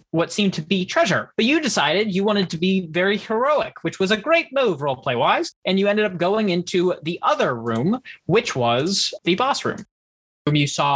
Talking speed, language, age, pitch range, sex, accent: 210 wpm, English, 20-39, 140-185 Hz, male, American